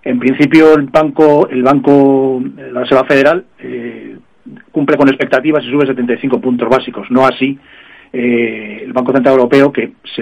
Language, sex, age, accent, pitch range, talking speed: Spanish, male, 40-59, Spanish, 125-140 Hz, 160 wpm